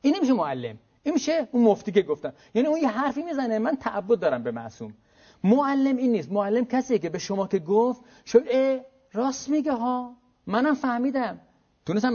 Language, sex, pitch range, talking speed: Persian, male, 160-245 Hz, 185 wpm